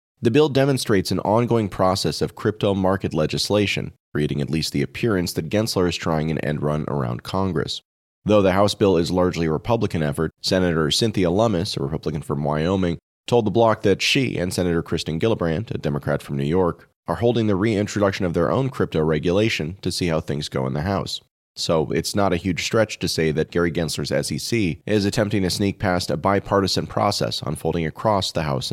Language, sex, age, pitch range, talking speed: English, male, 30-49, 75-100 Hz, 200 wpm